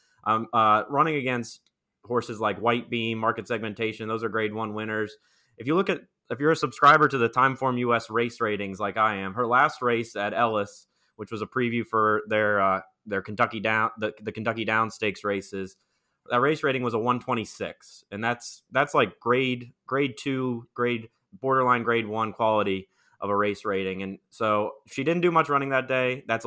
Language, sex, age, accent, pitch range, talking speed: English, male, 20-39, American, 100-120 Hz, 195 wpm